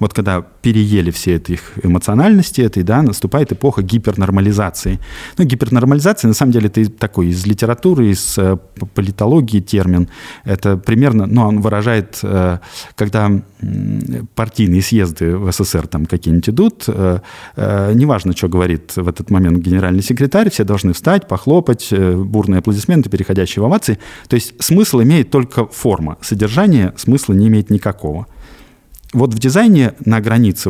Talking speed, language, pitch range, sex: 130 wpm, Russian, 95-125 Hz, male